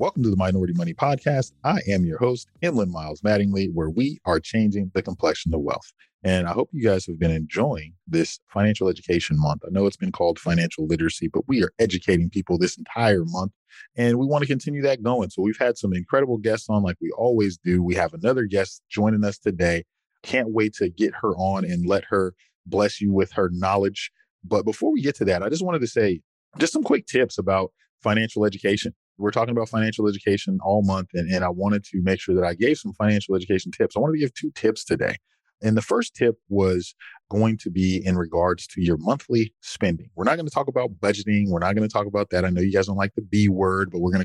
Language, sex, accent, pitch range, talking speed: English, male, American, 90-115 Hz, 235 wpm